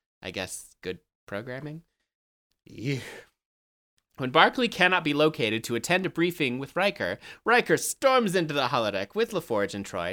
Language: English